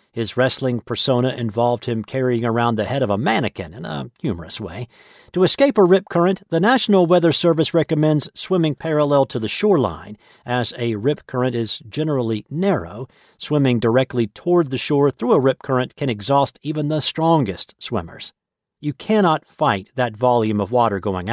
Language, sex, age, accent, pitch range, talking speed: English, male, 50-69, American, 115-155 Hz, 170 wpm